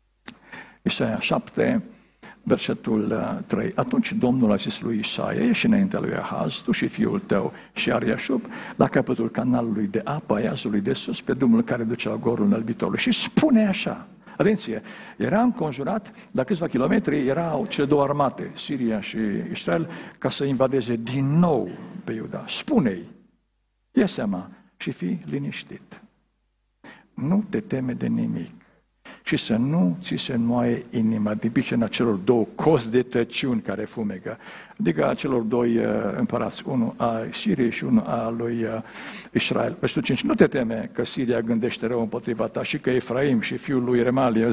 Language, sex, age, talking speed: Romanian, male, 60-79, 155 wpm